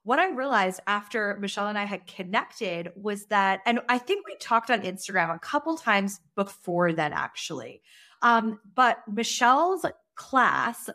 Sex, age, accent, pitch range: female, 20-39, American, 185-230 Hz